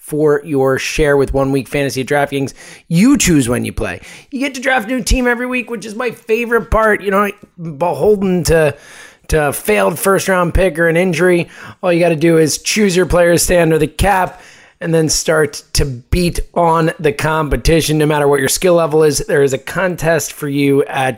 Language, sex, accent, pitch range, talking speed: English, male, American, 145-185 Hz, 205 wpm